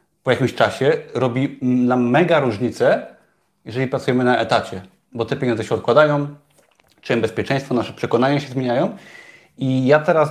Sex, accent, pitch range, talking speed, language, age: male, native, 120-155 Hz, 145 wpm, Polish, 30-49